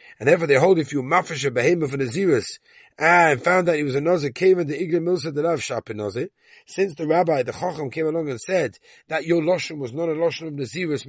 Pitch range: 130-180 Hz